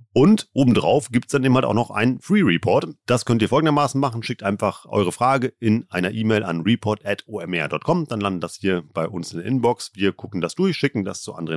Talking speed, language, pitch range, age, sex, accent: 225 wpm, German, 100-125 Hz, 40-59, male, German